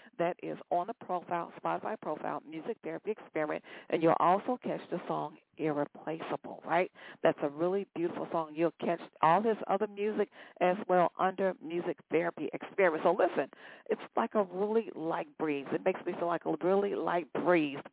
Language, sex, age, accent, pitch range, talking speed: English, female, 50-69, American, 160-205 Hz, 175 wpm